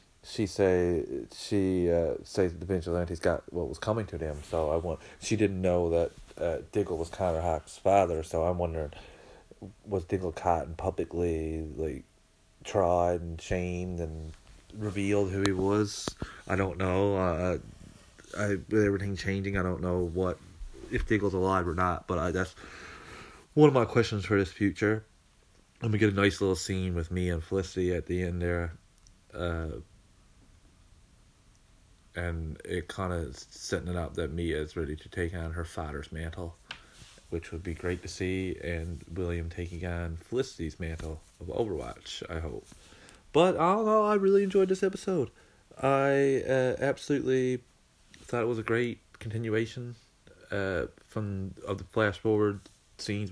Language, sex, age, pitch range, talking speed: English, male, 30-49, 85-105 Hz, 160 wpm